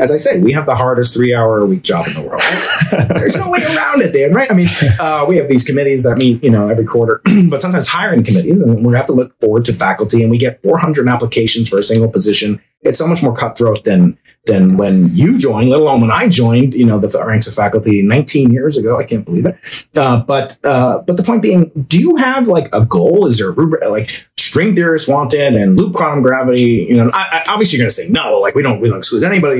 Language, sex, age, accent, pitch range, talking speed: English, male, 30-49, American, 115-170 Hz, 250 wpm